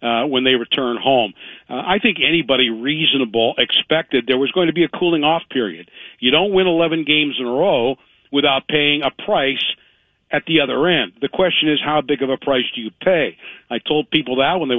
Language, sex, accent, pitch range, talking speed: English, male, American, 135-165 Hz, 215 wpm